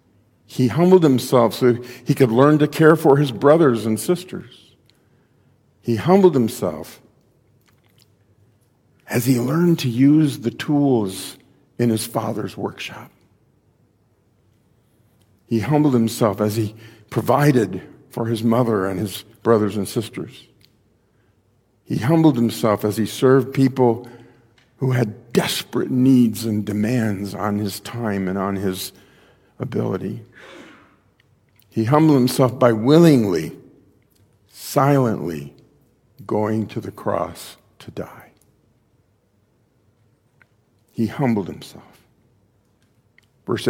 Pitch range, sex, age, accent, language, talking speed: 105-130 Hz, male, 50-69, American, English, 105 wpm